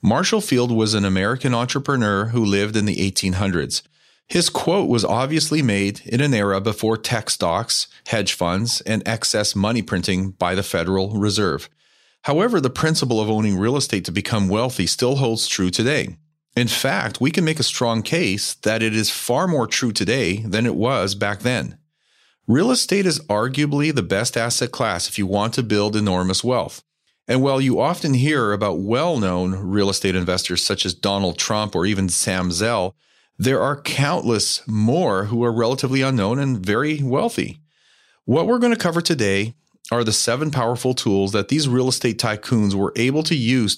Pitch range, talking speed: 100-130 Hz, 180 wpm